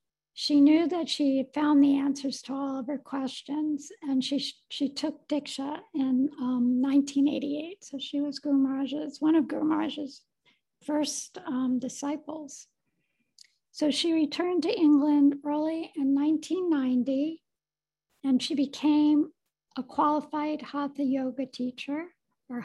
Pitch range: 270-300 Hz